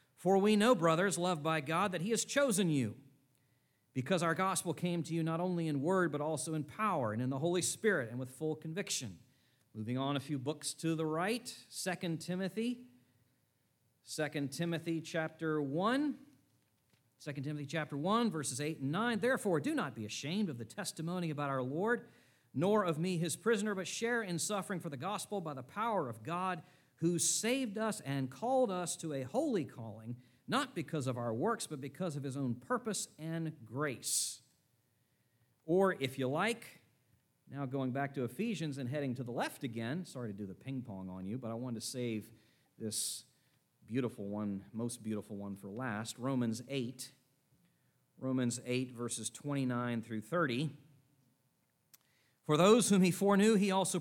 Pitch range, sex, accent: 125-180 Hz, male, American